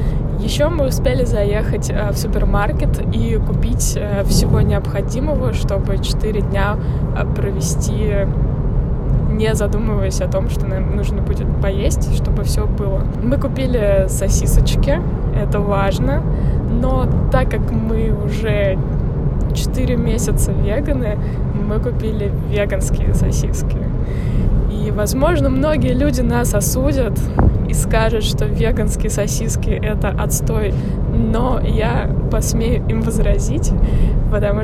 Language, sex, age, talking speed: Russian, female, 20-39, 105 wpm